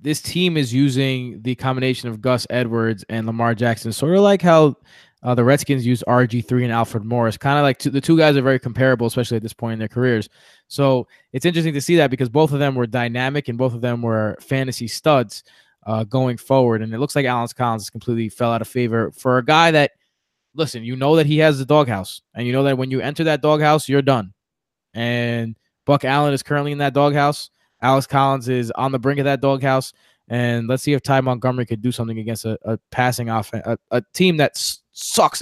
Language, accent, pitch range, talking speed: English, American, 120-145 Hz, 230 wpm